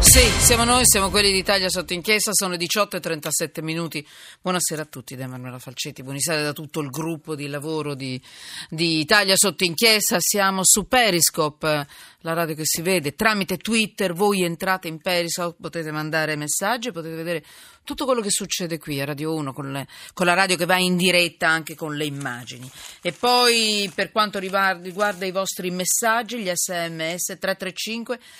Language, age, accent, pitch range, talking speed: Italian, 40-59, native, 155-200 Hz, 175 wpm